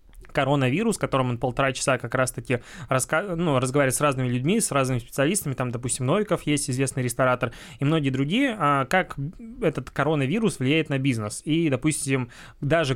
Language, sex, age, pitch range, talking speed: Russian, male, 20-39, 130-150 Hz, 165 wpm